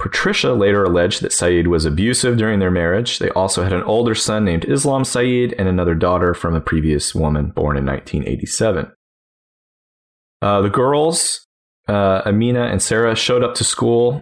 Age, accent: 30-49, American